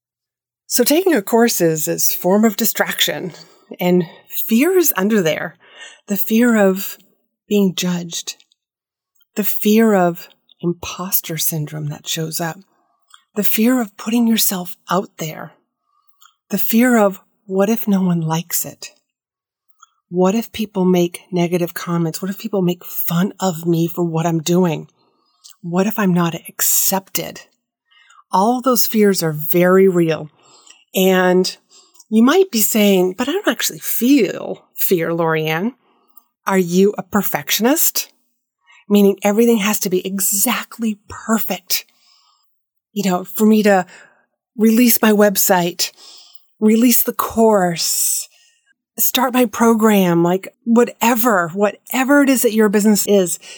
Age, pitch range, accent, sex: 30-49, 180-235 Hz, American, female